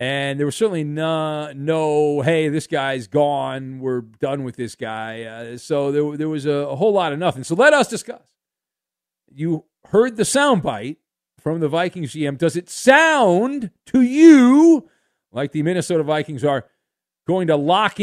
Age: 40-59